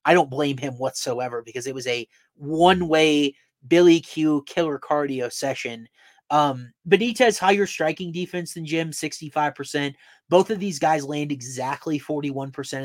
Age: 30-49